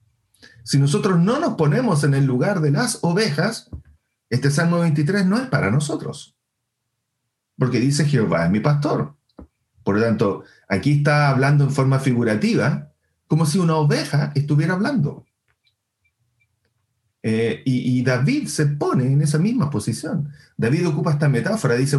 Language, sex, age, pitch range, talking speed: English, male, 40-59, 115-150 Hz, 145 wpm